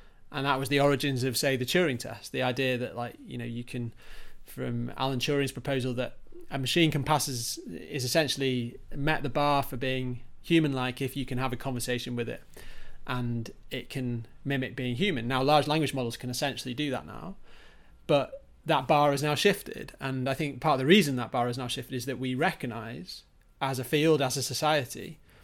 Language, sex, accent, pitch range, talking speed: English, male, British, 125-145 Hz, 210 wpm